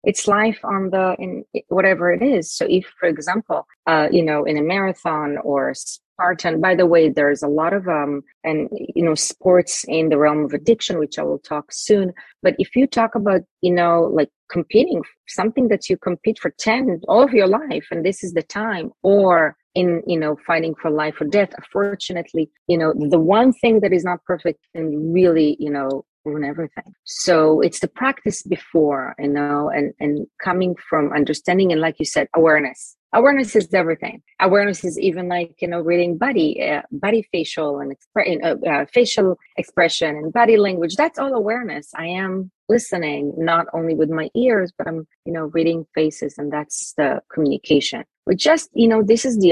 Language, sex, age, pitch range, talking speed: English, female, 30-49, 155-200 Hz, 190 wpm